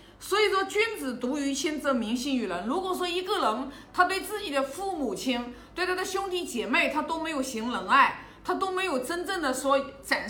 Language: Chinese